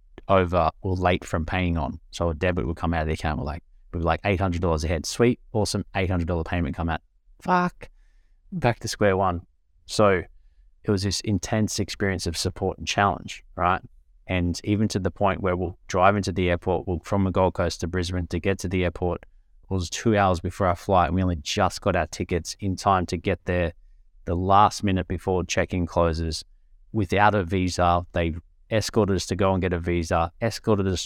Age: 20-39